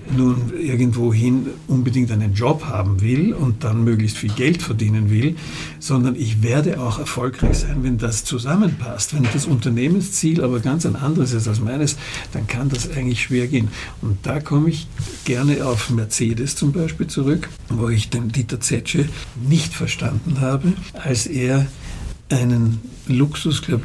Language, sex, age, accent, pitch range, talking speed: German, male, 60-79, German, 120-145 Hz, 155 wpm